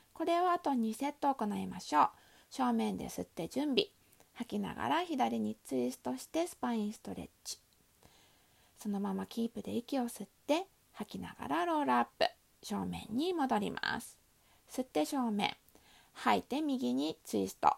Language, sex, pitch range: Japanese, female, 200-295 Hz